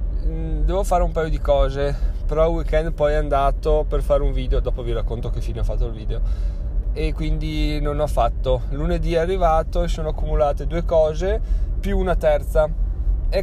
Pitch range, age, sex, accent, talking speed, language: 115-155 Hz, 20-39, male, native, 185 wpm, Italian